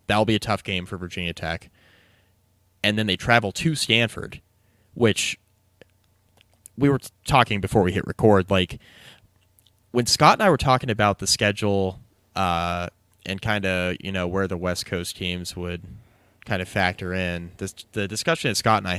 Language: English